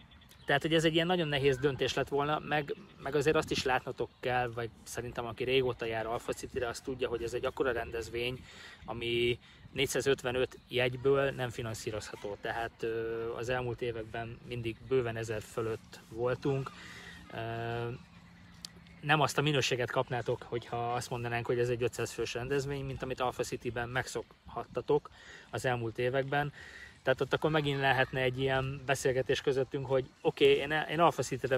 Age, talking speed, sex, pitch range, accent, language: 20-39, 155 wpm, male, 120-140 Hz, Finnish, English